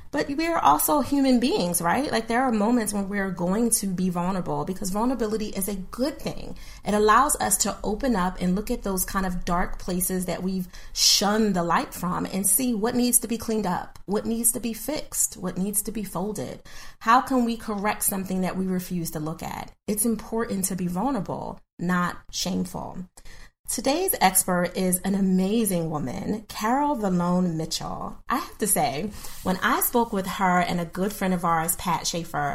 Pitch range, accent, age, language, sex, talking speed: 180-230 Hz, American, 30-49, English, female, 195 wpm